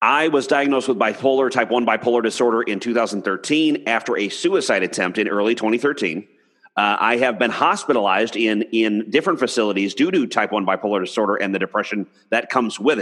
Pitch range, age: 115-145 Hz, 30-49